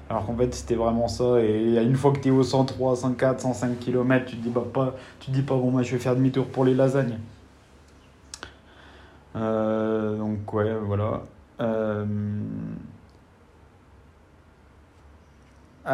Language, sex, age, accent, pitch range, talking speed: French, male, 20-39, French, 105-130 Hz, 145 wpm